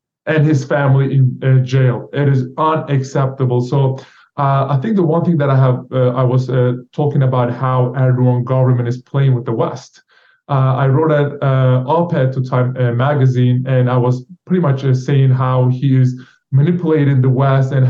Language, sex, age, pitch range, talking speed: English, male, 20-39, 130-145 Hz, 190 wpm